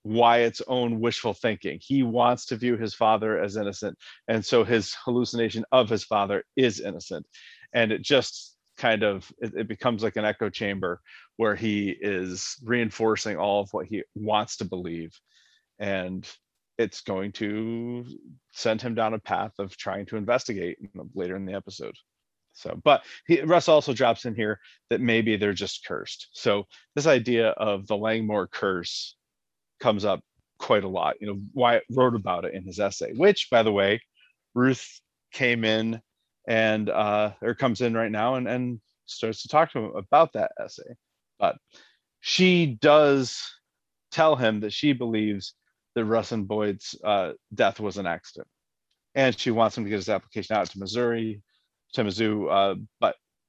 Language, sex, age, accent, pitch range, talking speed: English, male, 30-49, American, 105-120 Hz, 170 wpm